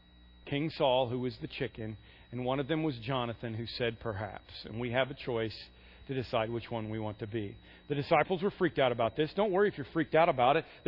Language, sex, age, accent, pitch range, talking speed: English, male, 40-59, American, 125-190 Hz, 245 wpm